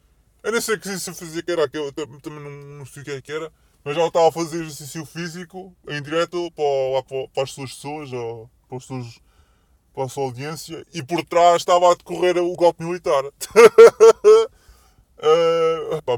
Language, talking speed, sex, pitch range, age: Portuguese, 170 wpm, female, 135-175 Hz, 20-39